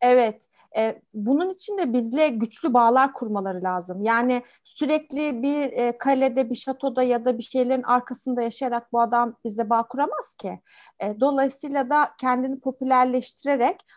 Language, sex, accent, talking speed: Turkish, female, native, 145 wpm